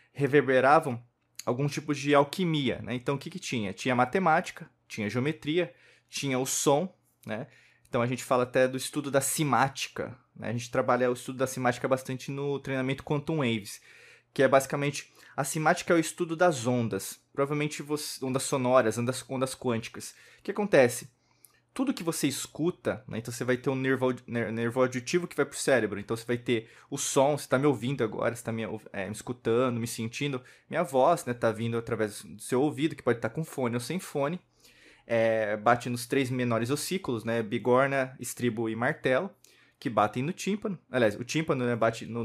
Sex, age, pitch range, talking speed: male, 20-39, 120-145 Hz, 195 wpm